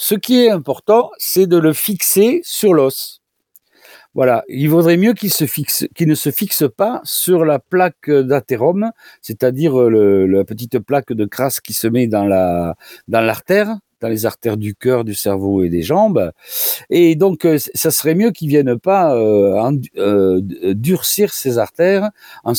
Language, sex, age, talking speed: French, male, 50-69, 175 wpm